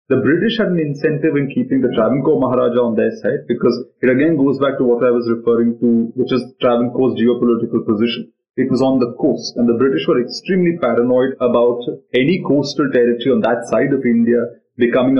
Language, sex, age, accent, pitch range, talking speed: English, male, 20-39, Indian, 115-145 Hz, 195 wpm